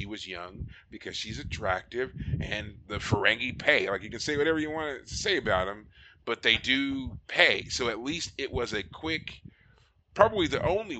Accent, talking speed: American, 185 wpm